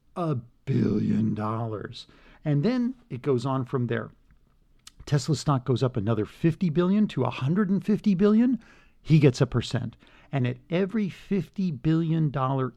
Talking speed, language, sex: 145 wpm, English, male